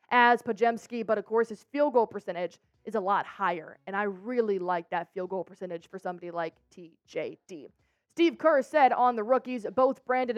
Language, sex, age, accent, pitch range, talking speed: English, female, 20-39, American, 190-260 Hz, 190 wpm